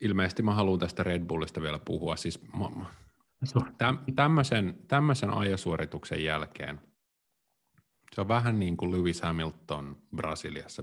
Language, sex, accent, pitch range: Finnish, male, native, 80-105 Hz